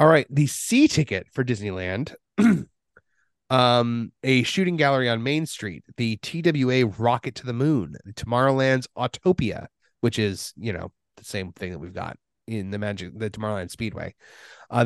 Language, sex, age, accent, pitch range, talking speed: English, male, 30-49, American, 110-140 Hz, 160 wpm